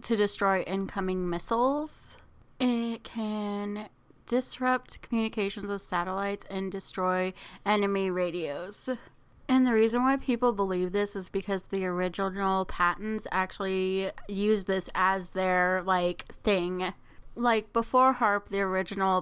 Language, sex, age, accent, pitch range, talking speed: English, female, 20-39, American, 185-220 Hz, 120 wpm